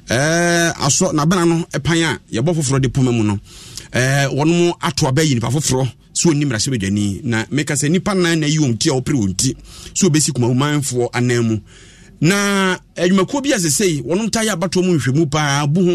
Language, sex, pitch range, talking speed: English, male, 125-180 Hz, 190 wpm